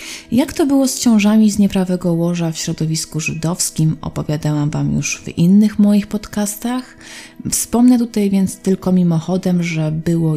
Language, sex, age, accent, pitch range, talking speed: Polish, female, 30-49, native, 150-195 Hz, 145 wpm